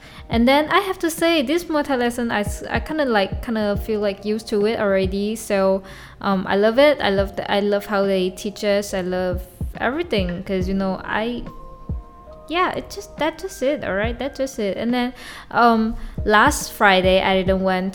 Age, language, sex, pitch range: 10-29, Chinese, female, 195-240 Hz